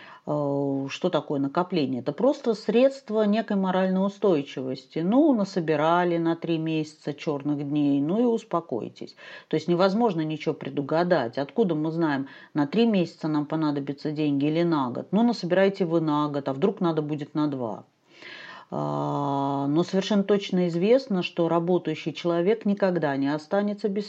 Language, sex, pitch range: Russian, female, 150-190 Hz